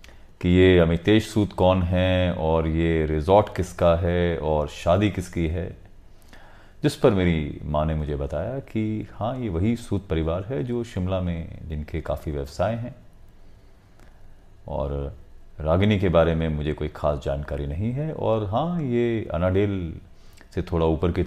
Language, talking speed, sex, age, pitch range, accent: Hindi, 155 wpm, male, 30-49, 80-100 Hz, native